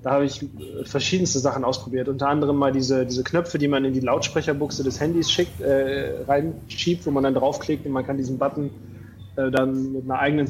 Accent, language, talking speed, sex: German, German, 205 wpm, male